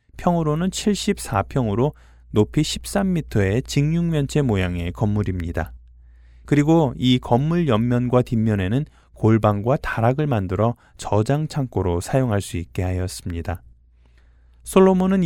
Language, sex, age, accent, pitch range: Korean, male, 20-39, native, 95-155 Hz